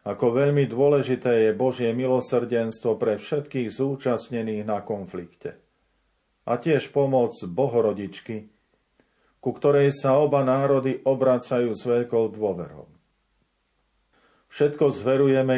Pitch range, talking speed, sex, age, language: 110-130 Hz, 100 wpm, male, 50-69, Slovak